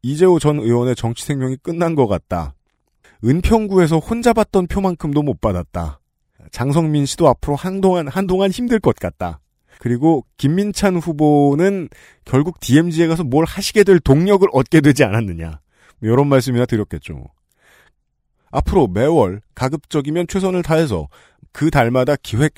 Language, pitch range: Korean, 110-170 Hz